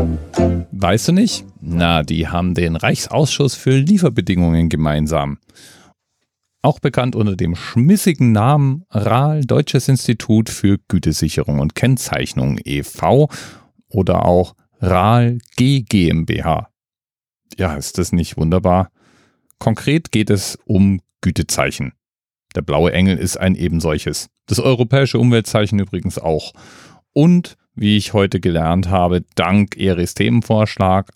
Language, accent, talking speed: German, German, 110 wpm